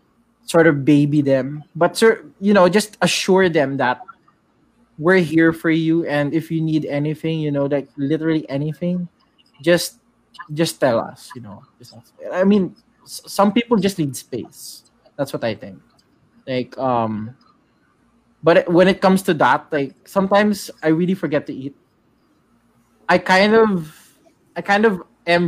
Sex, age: male, 20-39